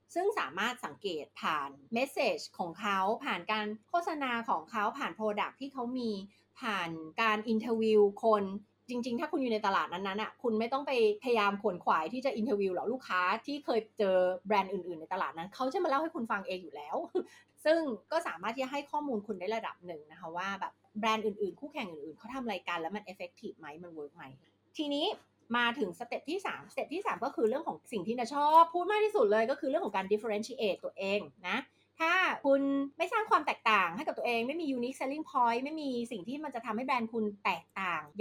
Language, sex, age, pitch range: Thai, female, 30-49, 195-275 Hz